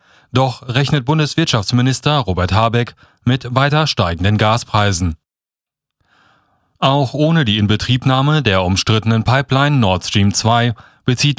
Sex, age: male, 30-49